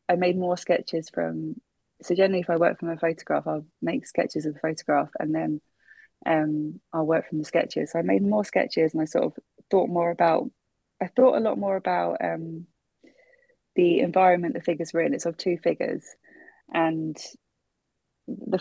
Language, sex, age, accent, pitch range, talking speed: English, female, 20-39, British, 160-180 Hz, 185 wpm